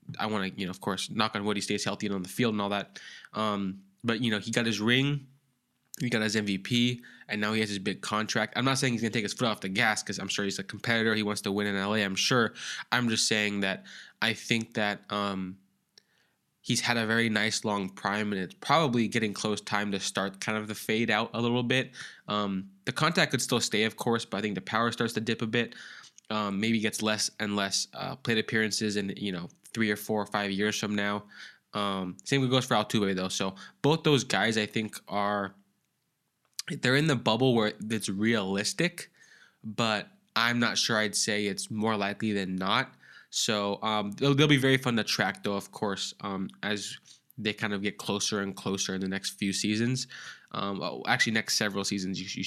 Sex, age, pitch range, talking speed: male, 20-39, 100-120 Hz, 225 wpm